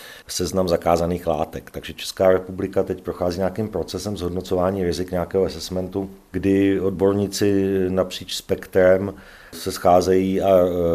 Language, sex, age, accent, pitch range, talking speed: Czech, male, 40-59, native, 90-100 Hz, 115 wpm